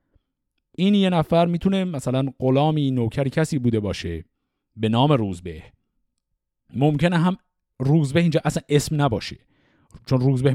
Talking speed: 125 wpm